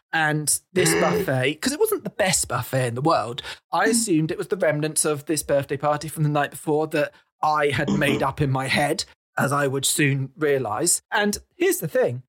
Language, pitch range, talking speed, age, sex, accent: English, 145-190 Hz, 210 wpm, 30-49, male, British